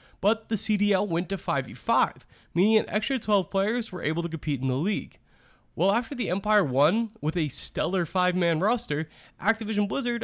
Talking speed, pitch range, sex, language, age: 175 wpm, 155-210 Hz, male, English, 20-39